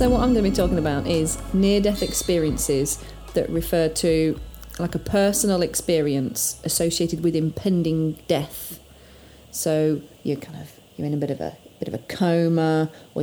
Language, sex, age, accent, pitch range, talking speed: English, female, 30-49, British, 155-185 Hz, 170 wpm